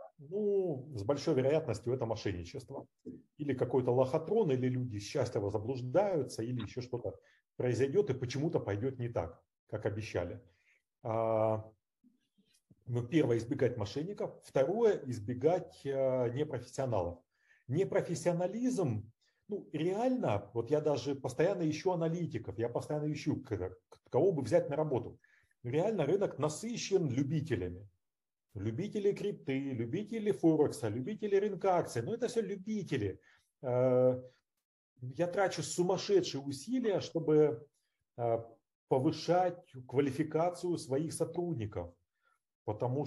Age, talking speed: 40-59, 100 wpm